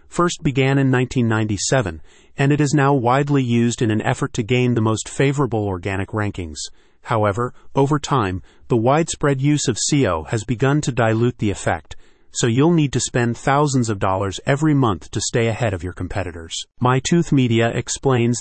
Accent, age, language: American, 40-59, English